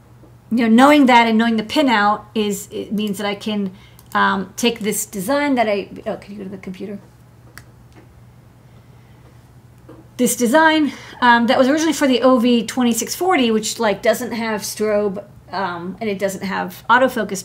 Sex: female